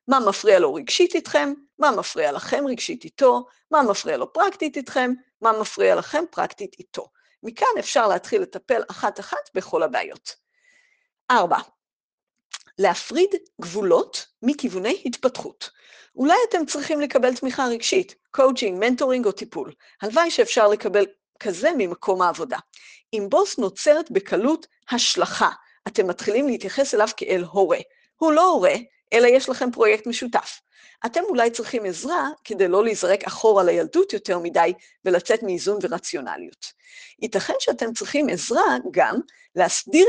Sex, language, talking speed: female, Hebrew, 130 wpm